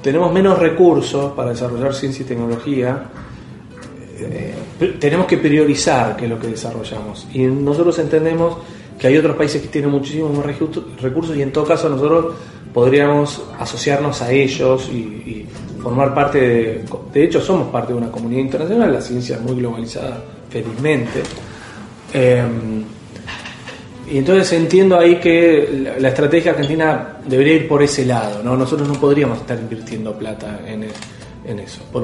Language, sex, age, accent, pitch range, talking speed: Spanish, male, 30-49, Argentinian, 120-150 Hz, 155 wpm